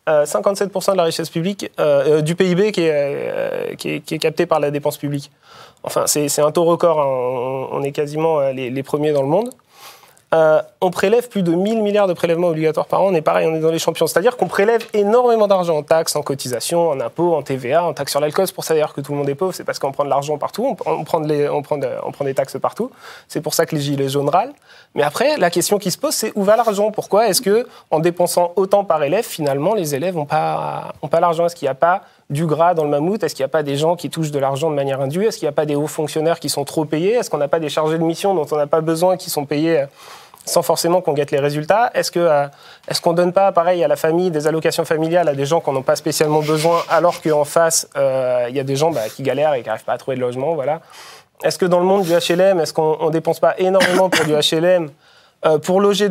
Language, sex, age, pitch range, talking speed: French, male, 30-49, 150-180 Hz, 270 wpm